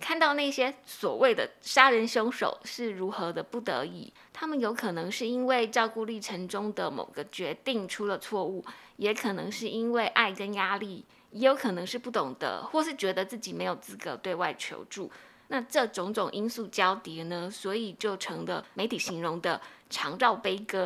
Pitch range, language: 195-240 Hz, Chinese